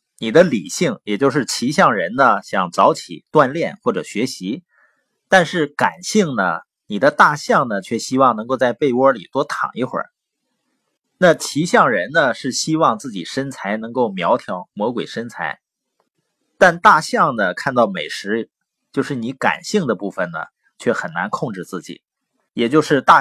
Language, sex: Chinese, male